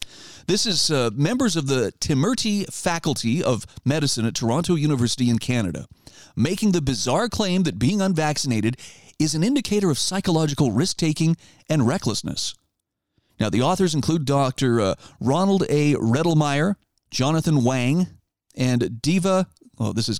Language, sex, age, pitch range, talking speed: English, male, 40-59, 125-175 Hz, 135 wpm